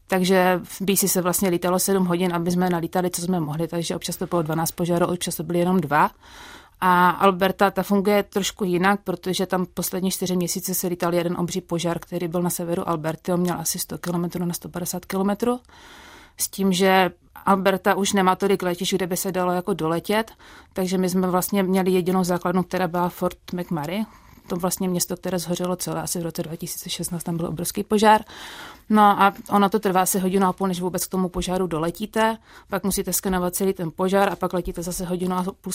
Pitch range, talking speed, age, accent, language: 175-195 Hz, 205 wpm, 30-49, native, Czech